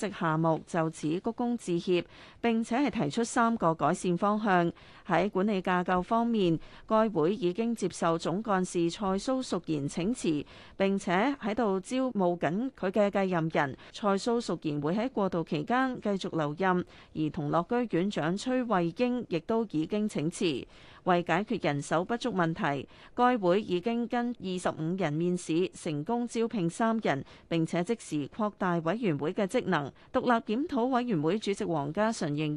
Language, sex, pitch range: Chinese, female, 170-225 Hz